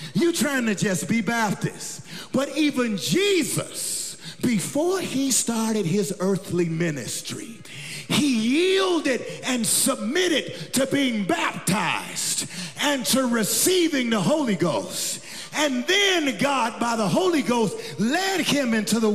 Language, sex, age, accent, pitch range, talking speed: English, male, 40-59, American, 210-305 Hz, 120 wpm